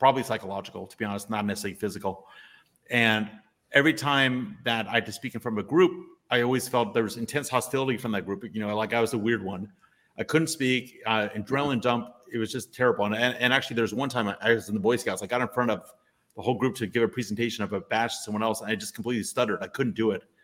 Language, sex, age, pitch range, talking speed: English, male, 30-49, 105-125 Hz, 265 wpm